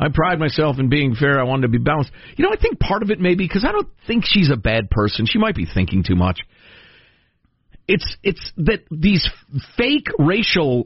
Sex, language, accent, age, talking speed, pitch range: male, English, American, 50-69, 220 wpm, 95-155 Hz